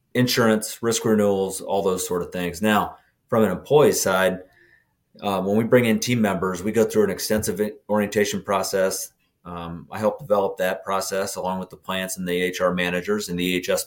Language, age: English, 30-49